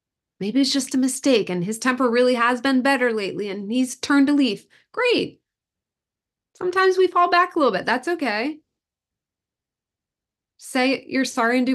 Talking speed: 170 wpm